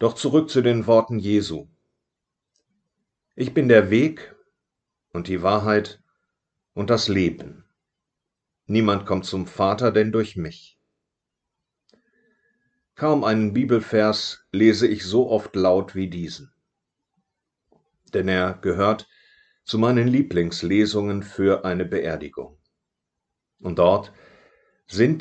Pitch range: 90-115 Hz